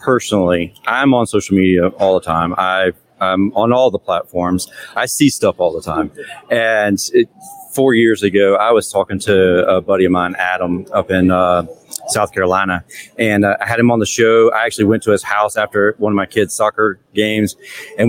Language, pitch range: English, 95-120 Hz